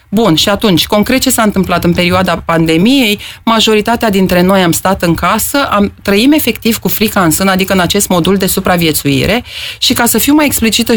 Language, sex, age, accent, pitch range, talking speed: Romanian, female, 30-49, native, 185-235 Hz, 190 wpm